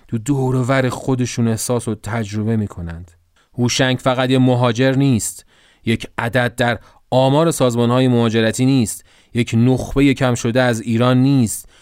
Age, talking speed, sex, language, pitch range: 30-49, 140 wpm, male, Persian, 105-130 Hz